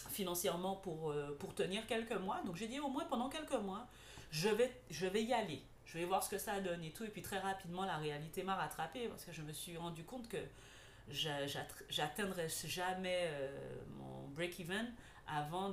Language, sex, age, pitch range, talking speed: French, female, 40-59, 150-195 Hz, 205 wpm